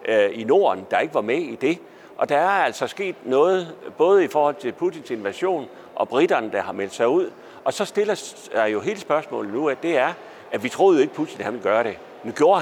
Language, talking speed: Danish, 240 wpm